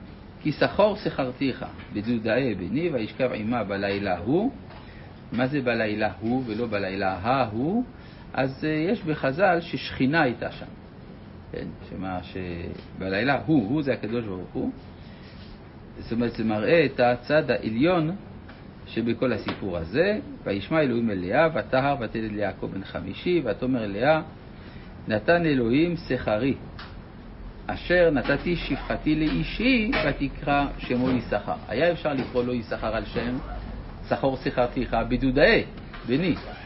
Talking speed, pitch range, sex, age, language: 125 wpm, 105-150 Hz, male, 60-79, Hebrew